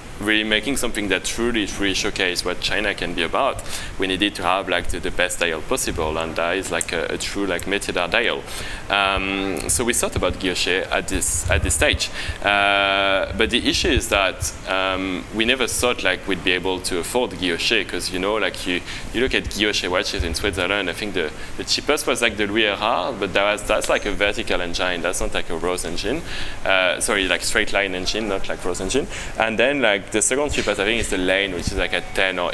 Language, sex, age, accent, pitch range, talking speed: English, male, 20-39, French, 90-110 Hz, 230 wpm